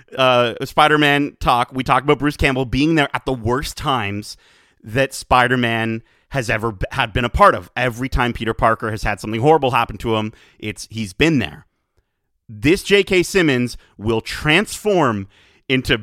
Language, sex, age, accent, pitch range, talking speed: English, male, 30-49, American, 115-160 Hz, 170 wpm